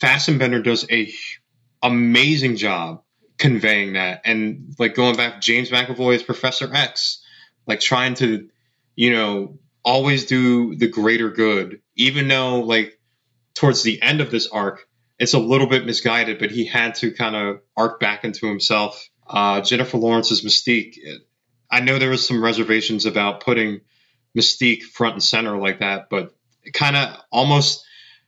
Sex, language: male, English